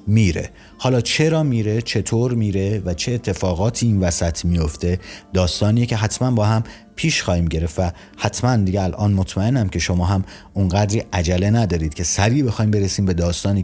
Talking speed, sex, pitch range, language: 165 wpm, male, 85-110 Hz, Persian